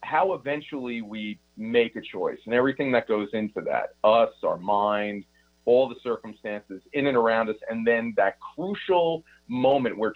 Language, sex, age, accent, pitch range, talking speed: English, male, 40-59, American, 95-120 Hz, 165 wpm